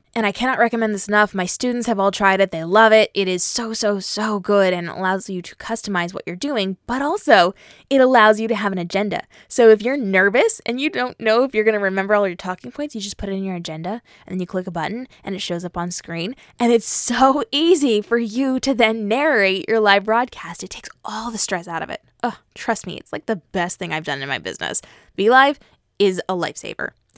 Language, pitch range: English, 190-235 Hz